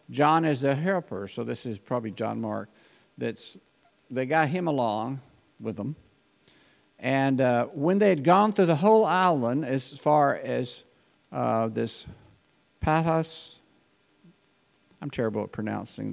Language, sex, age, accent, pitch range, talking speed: English, male, 50-69, American, 125-155 Hz, 140 wpm